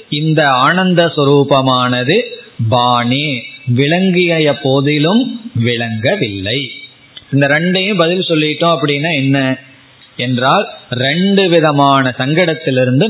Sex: male